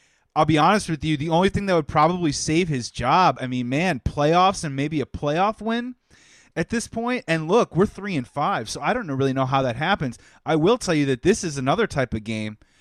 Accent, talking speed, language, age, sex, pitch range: American, 240 wpm, English, 30-49, male, 135-180 Hz